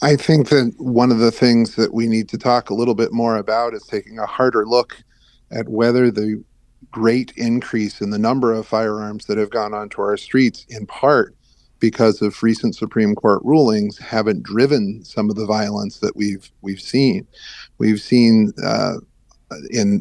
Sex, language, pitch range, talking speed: male, English, 105-120 Hz, 180 wpm